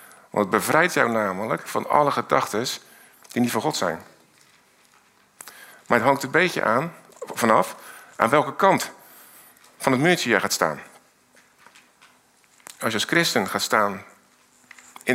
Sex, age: male, 50-69